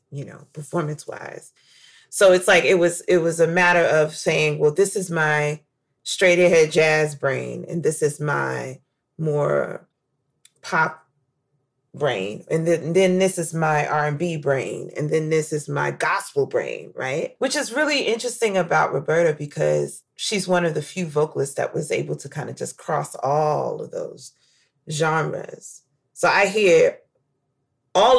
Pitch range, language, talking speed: 150-190 Hz, English, 160 wpm